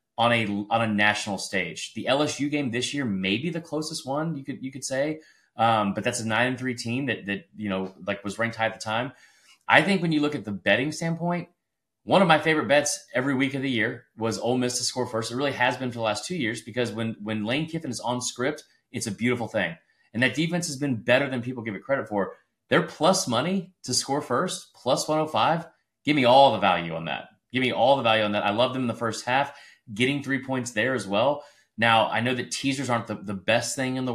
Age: 30-49